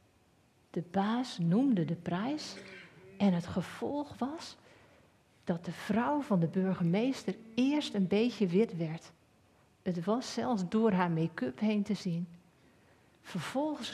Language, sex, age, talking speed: Dutch, female, 40-59, 130 wpm